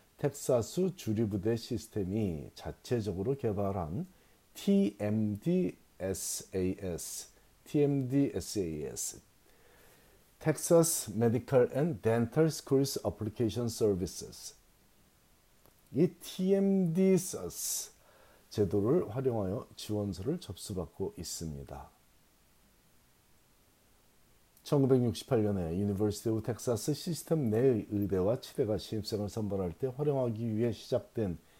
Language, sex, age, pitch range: Korean, male, 50-69, 95-135 Hz